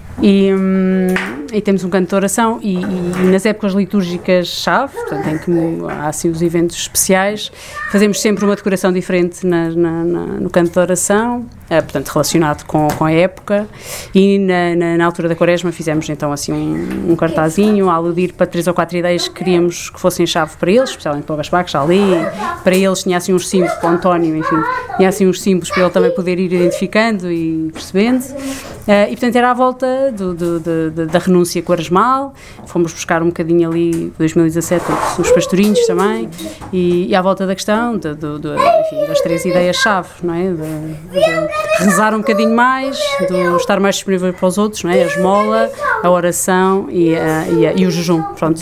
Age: 30-49